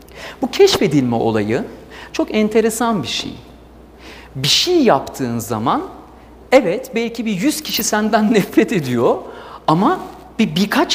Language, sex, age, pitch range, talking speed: Turkish, male, 40-59, 140-230 Hz, 120 wpm